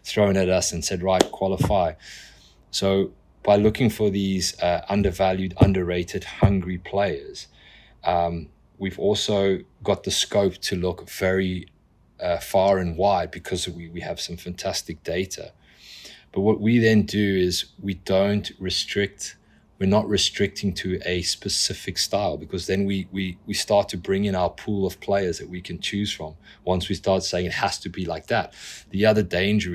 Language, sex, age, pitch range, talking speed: English, male, 20-39, 90-100 Hz, 170 wpm